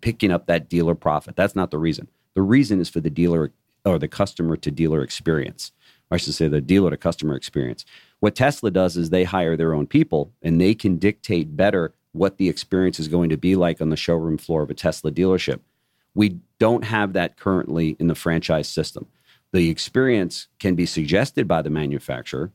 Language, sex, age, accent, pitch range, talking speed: English, male, 40-59, American, 80-90 Hz, 200 wpm